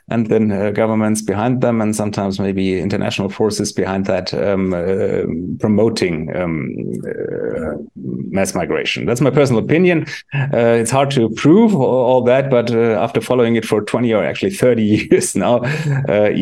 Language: English